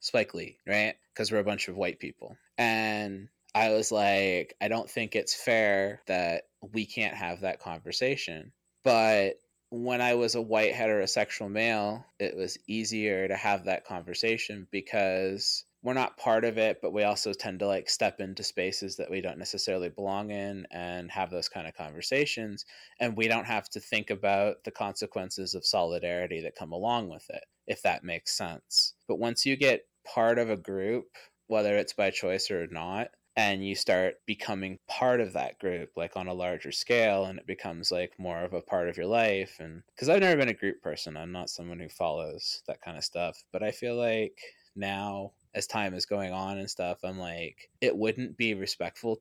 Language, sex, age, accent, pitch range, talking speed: English, male, 20-39, American, 95-110 Hz, 195 wpm